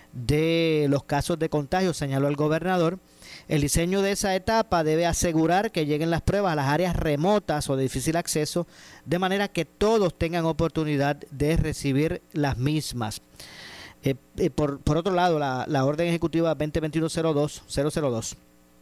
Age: 40-59